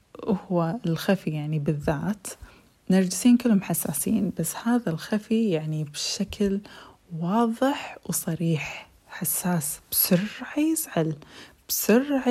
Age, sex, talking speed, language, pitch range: 20-39, female, 90 wpm, Arabic, 160-210 Hz